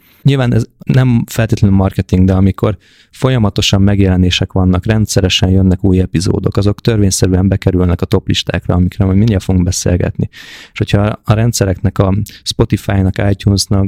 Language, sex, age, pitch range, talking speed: Hungarian, male, 20-39, 95-110 Hz, 140 wpm